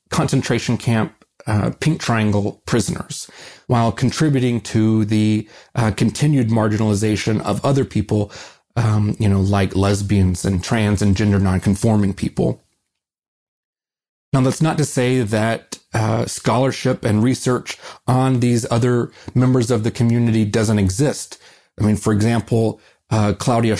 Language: English